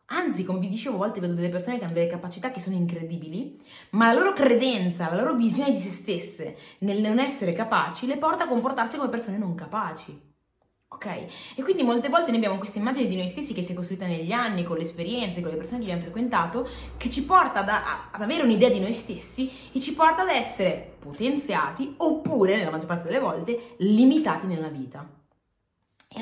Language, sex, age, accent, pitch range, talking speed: Italian, female, 20-39, native, 170-245 Hz, 210 wpm